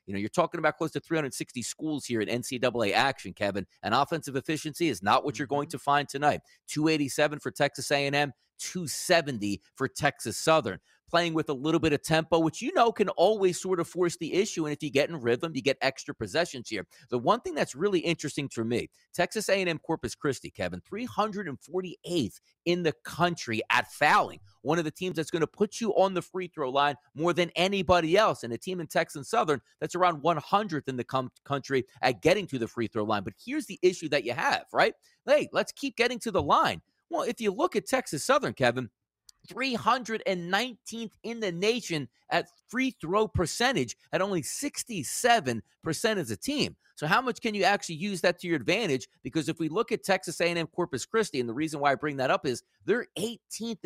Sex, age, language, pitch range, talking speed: male, 40-59, English, 135-190 Hz, 205 wpm